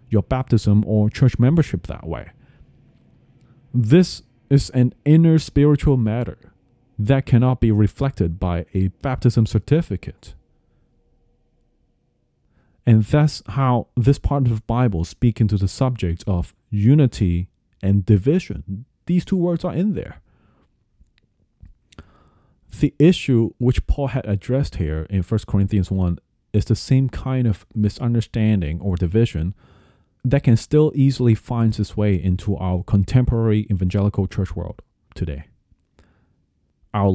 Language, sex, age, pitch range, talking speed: English, male, 30-49, 95-125 Hz, 125 wpm